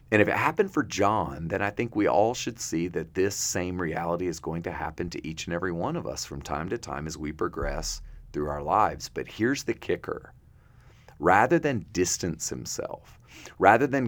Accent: American